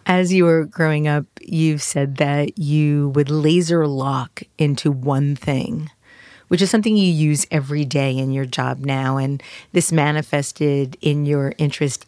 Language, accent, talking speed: English, American, 160 wpm